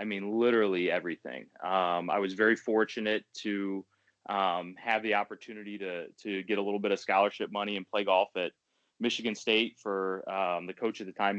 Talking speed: 190 wpm